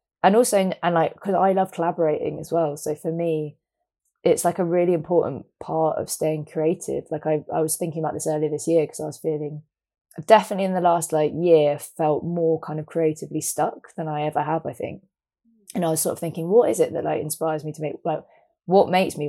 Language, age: English, 20-39